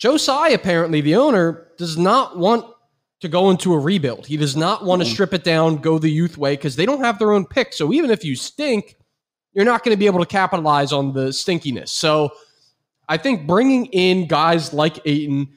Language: English